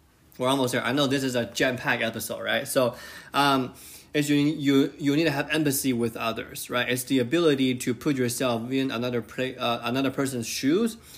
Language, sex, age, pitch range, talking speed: English, male, 20-39, 115-140 Hz, 200 wpm